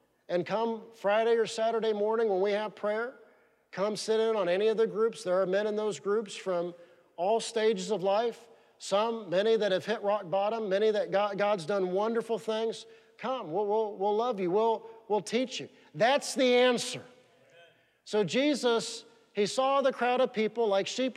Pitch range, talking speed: 205-240 Hz, 185 wpm